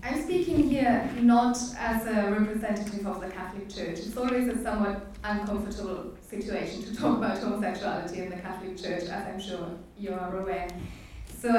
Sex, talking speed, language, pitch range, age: female, 165 wpm, English, 190-235 Hz, 30-49